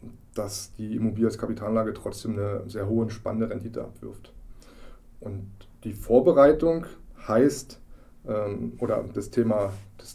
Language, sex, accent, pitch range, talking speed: German, male, German, 110-125 Hz, 110 wpm